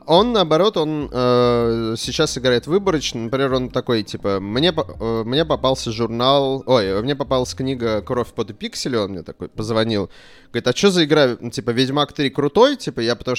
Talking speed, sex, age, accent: 170 wpm, male, 30-49, native